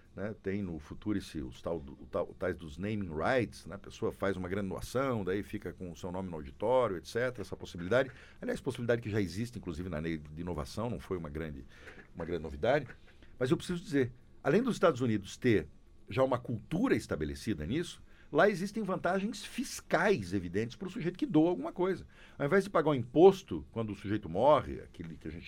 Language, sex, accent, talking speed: Portuguese, male, Brazilian, 205 wpm